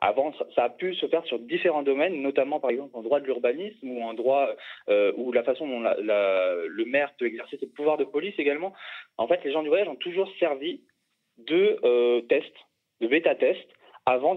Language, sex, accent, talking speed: French, male, French, 205 wpm